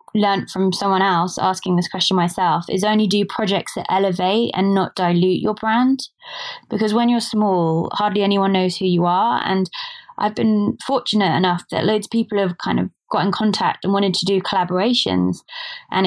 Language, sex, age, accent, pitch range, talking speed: English, female, 20-39, British, 180-210 Hz, 185 wpm